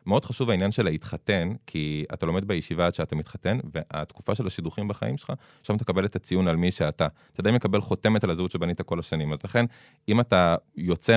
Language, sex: Hebrew, male